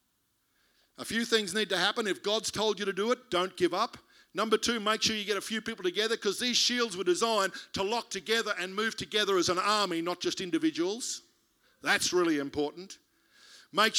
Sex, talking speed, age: male, 200 wpm, 50-69